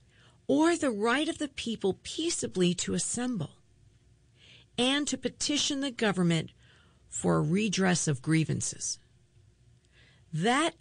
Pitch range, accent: 130-200 Hz, American